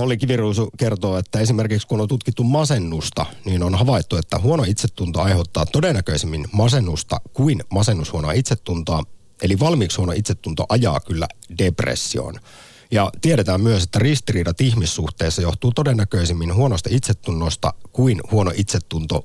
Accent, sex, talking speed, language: native, male, 130 wpm, Finnish